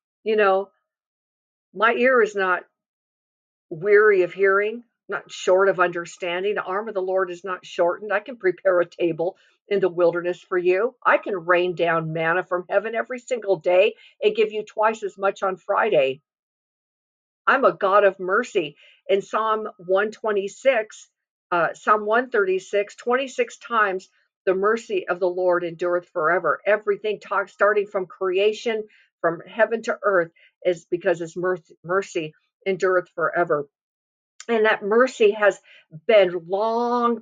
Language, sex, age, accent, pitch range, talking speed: English, female, 50-69, American, 175-220 Hz, 145 wpm